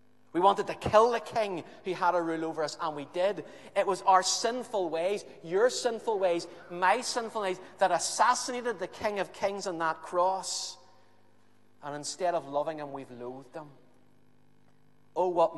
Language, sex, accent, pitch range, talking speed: English, male, British, 140-180 Hz, 175 wpm